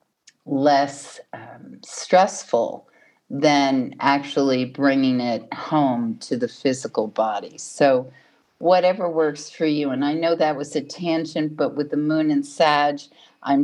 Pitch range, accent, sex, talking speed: 135-170 Hz, American, female, 135 wpm